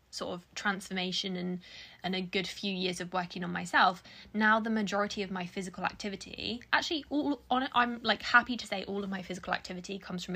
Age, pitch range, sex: 10-29, 185-225 Hz, female